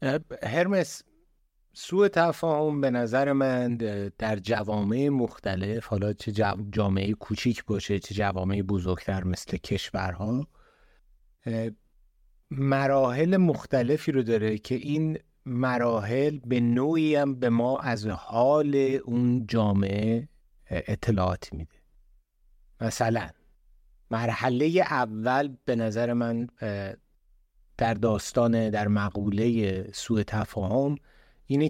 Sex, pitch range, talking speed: male, 105-130 Hz, 95 wpm